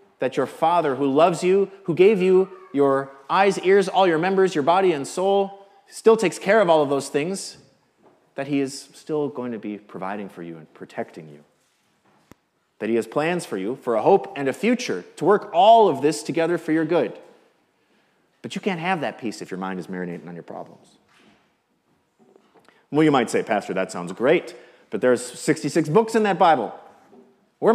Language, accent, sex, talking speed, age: English, American, male, 195 wpm, 30-49